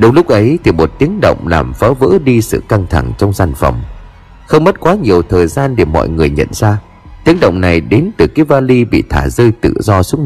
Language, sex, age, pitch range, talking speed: Vietnamese, male, 30-49, 90-140 Hz, 240 wpm